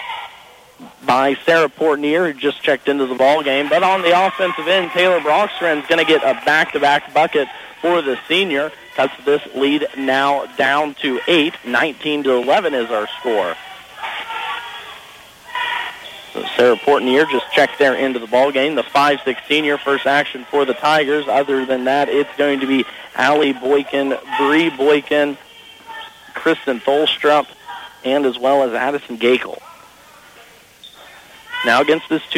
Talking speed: 145 wpm